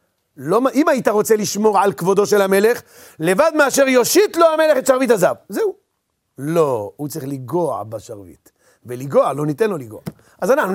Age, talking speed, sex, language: 40-59, 165 wpm, male, Hebrew